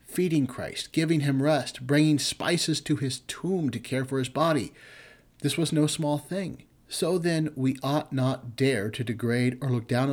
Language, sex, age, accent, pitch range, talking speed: English, male, 50-69, American, 125-155 Hz, 185 wpm